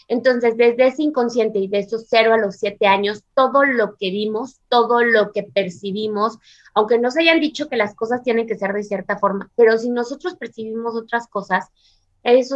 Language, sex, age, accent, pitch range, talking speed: Spanish, female, 20-39, Mexican, 205-250 Hz, 190 wpm